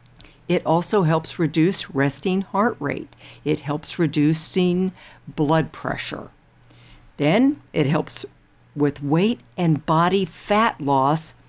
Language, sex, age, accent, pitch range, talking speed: English, female, 60-79, American, 155-210 Hz, 110 wpm